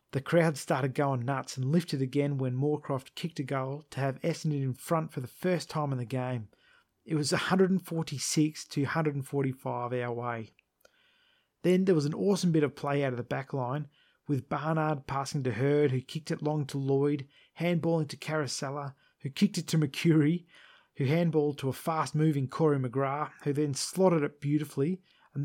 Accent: Australian